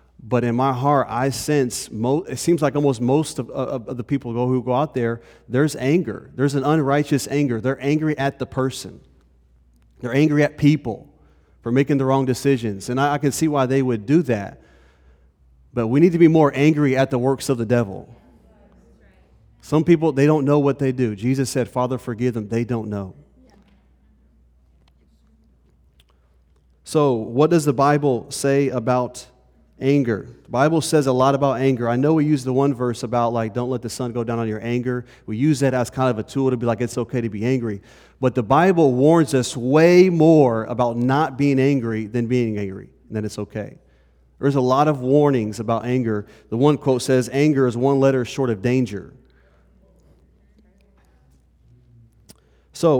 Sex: male